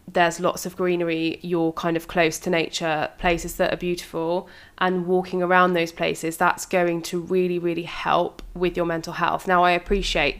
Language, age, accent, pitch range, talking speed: English, 20-39, British, 170-190 Hz, 185 wpm